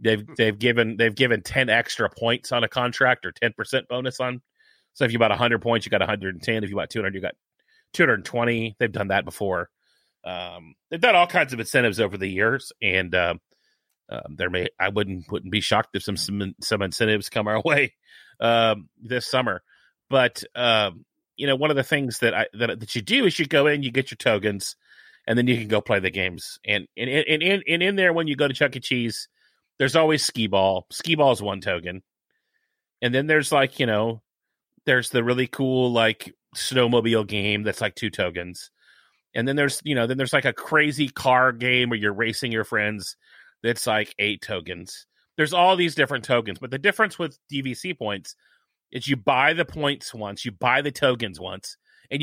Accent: American